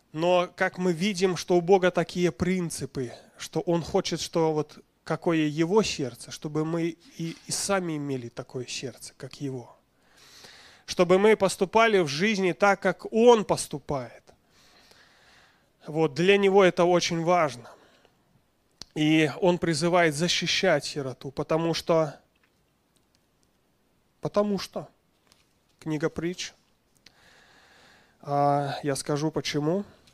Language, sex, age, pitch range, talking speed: Russian, male, 20-39, 150-180 Hz, 110 wpm